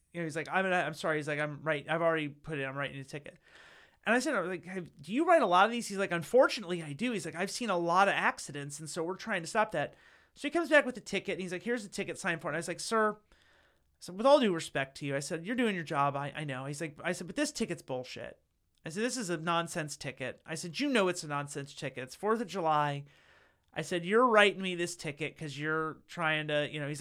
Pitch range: 145-185 Hz